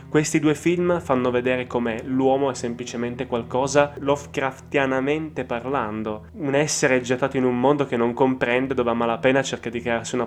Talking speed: 165 wpm